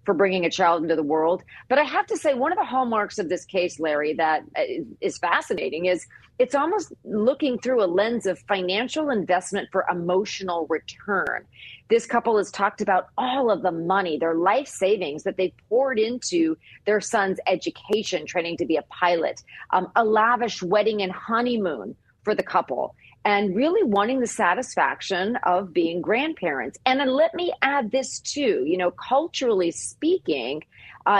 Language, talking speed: English, 175 wpm